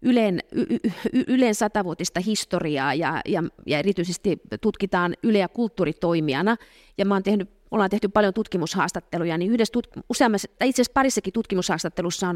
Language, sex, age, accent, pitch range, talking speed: Finnish, female, 30-49, native, 170-215 Hz, 150 wpm